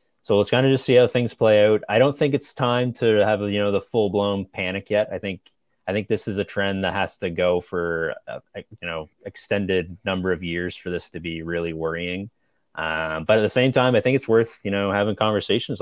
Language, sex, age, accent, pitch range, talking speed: English, male, 20-39, American, 90-110 Hz, 240 wpm